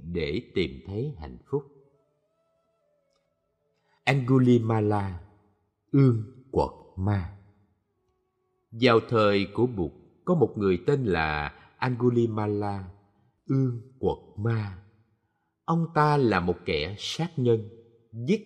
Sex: male